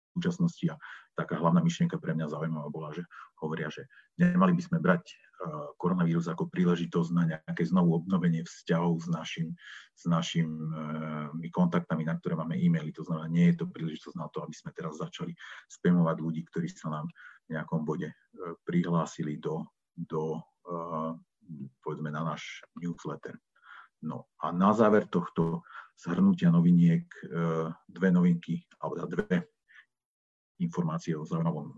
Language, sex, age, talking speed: Slovak, male, 40-59, 140 wpm